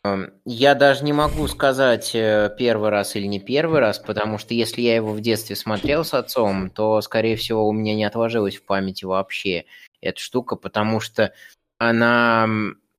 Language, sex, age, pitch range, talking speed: Russian, male, 20-39, 115-185 Hz, 165 wpm